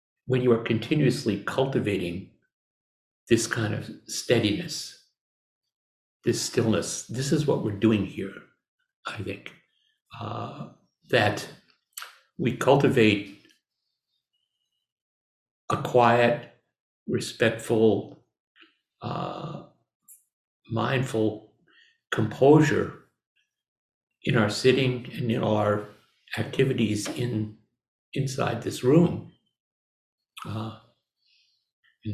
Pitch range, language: 110-135 Hz, English